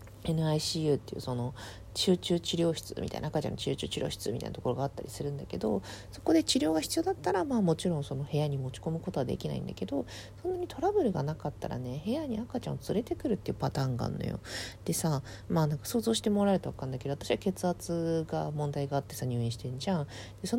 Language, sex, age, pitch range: Japanese, female, 40-59, 140-235 Hz